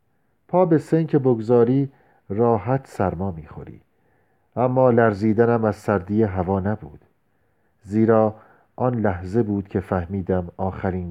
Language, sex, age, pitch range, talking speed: Persian, male, 40-59, 95-125 Hz, 115 wpm